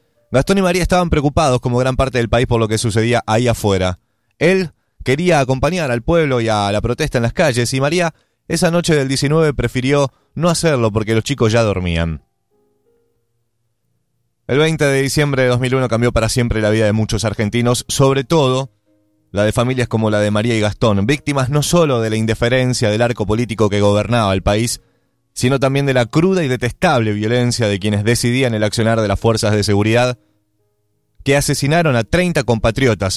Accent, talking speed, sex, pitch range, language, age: Argentinian, 185 wpm, male, 105-135 Hz, Spanish, 20-39